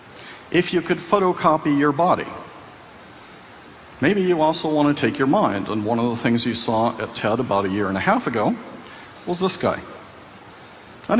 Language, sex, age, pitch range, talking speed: English, male, 50-69, 110-135 Hz, 180 wpm